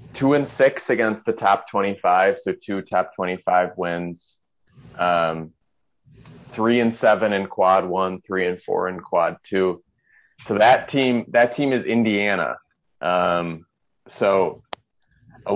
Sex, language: male, English